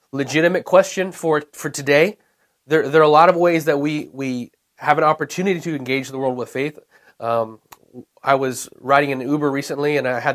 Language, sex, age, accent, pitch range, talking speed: English, male, 30-49, American, 130-165 Hz, 195 wpm